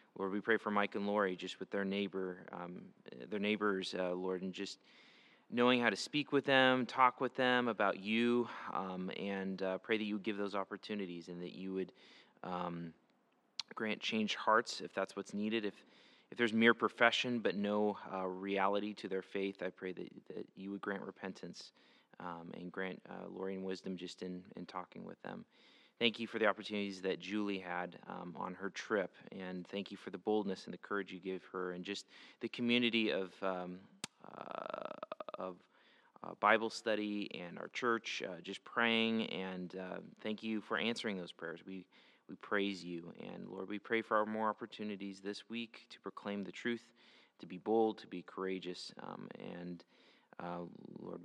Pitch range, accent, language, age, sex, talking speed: 95-110 Hz, American, English, 30-49, male, 190 wpm